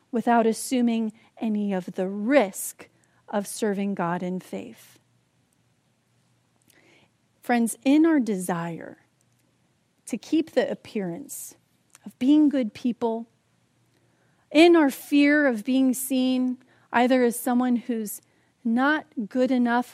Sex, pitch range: female, 210-265 Hz